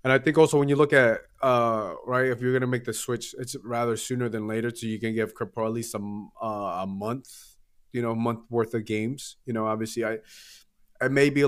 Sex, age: male, 20-39